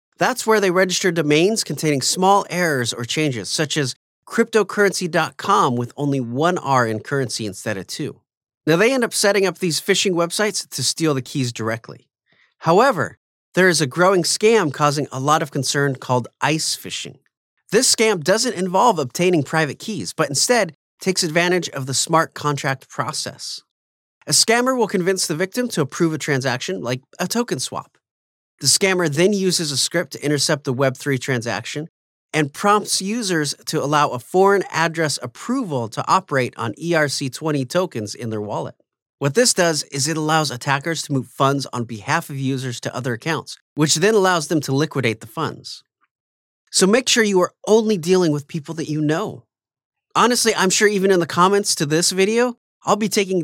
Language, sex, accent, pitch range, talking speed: English, male, American, 135-190 Hz, 175 wpm